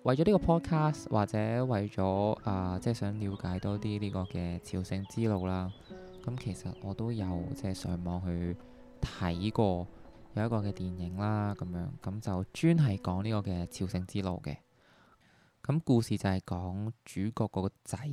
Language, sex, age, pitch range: Chinese, male, 20-39, 90-115 Hz